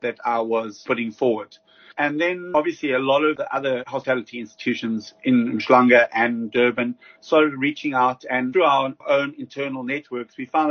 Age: 30-49